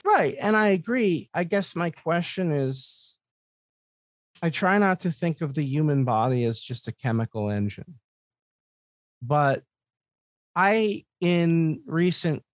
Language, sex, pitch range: English, male, 100-135 Hz